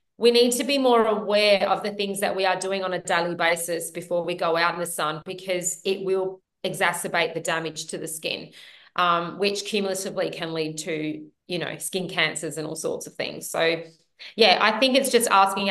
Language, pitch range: English, 170-205 Hz